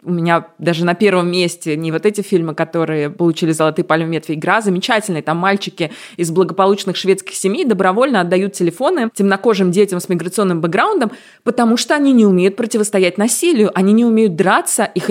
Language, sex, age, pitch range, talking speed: Russian, female, 20-39, 180-220 Hz, 170 wpm